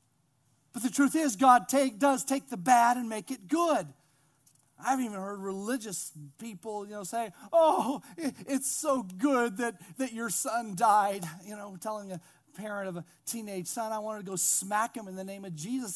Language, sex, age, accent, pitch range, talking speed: English, male, 40-59, American, 175-270 Hz, 200 wpm